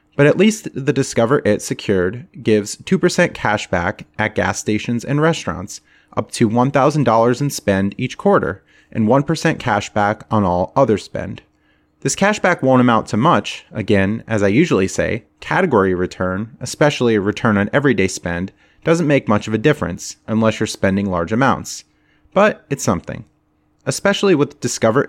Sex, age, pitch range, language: male, 30-49, 100-145 Hz, English